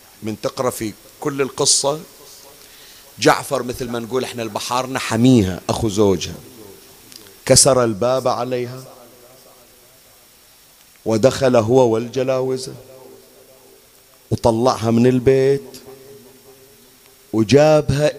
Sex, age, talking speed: male, 40-59, 80 wpm